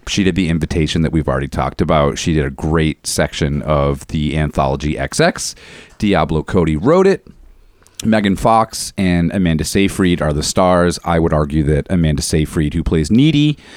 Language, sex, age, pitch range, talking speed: English, male, 30-49, 85-115 Hz, 170 wpm